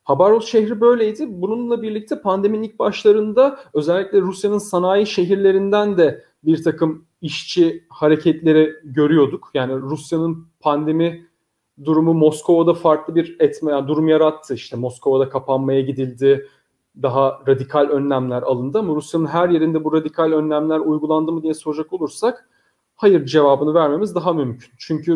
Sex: male